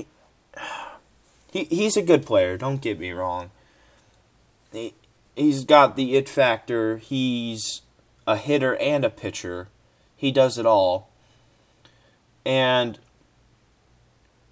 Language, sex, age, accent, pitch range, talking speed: English, male, 20-39, American, 95-125 Hz, 105 wpm